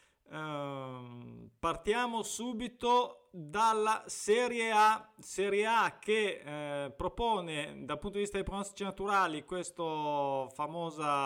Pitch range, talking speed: 155-195 Hz, 100 wpm